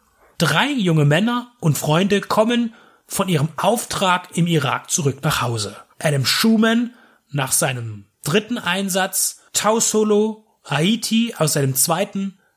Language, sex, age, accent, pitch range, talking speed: German, male, 30-49, German, 160-210 Hz, 125 wpm